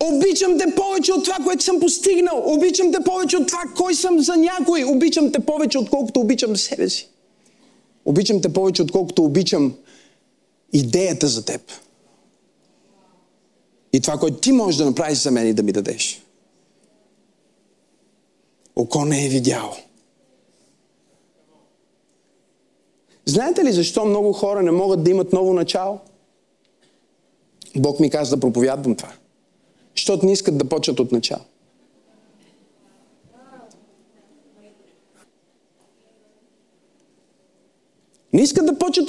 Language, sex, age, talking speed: Bulgarian, male, 40-59, 115 wpm